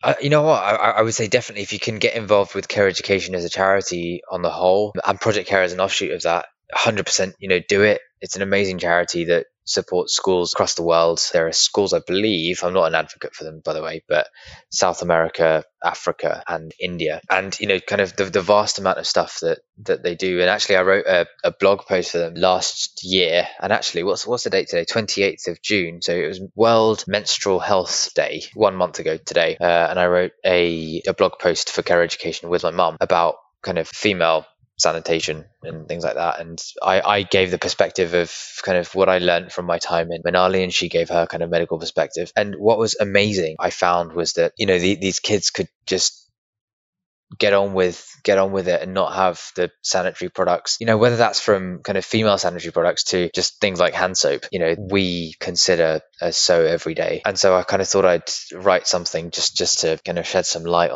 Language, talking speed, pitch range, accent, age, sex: English, 225 wpm, 85-105 Hz, British, 20-39, male